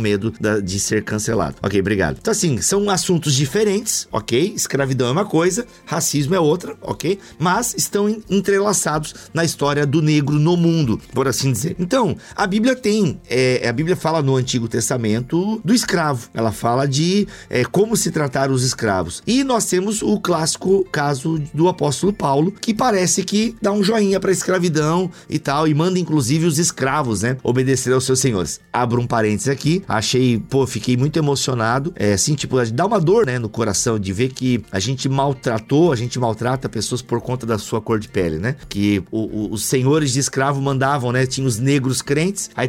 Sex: male